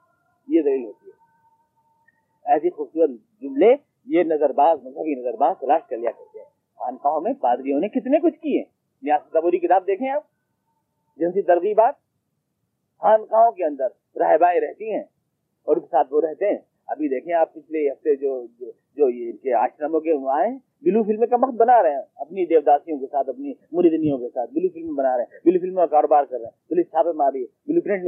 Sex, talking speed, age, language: male, 130 wpm, 40-59, Urdu